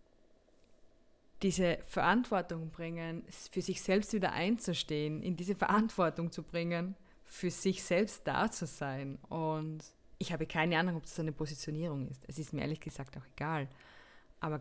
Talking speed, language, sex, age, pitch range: 150 wpm, German, female, 20-39, 145-180 Hz